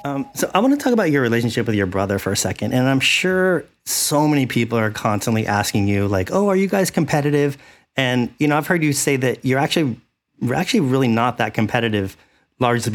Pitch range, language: 105-135 Hz, English